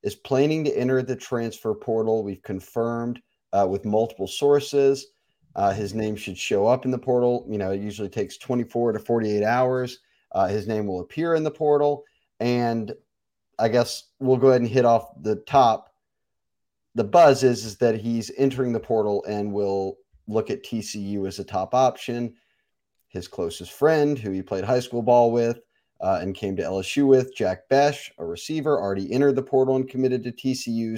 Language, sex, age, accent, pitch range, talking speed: English, male, 30-49, American, 105-130 Hz, 185 wpm